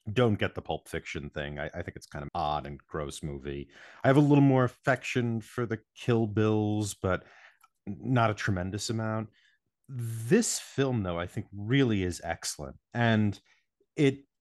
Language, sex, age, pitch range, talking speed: English, male, 30-49, 85-115 Hz, 170 wpm